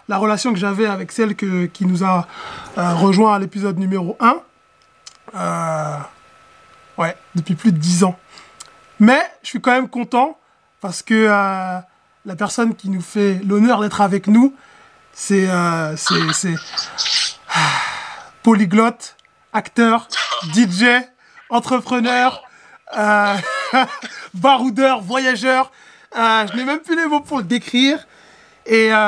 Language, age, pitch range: French, 20-39, 195-255 Hz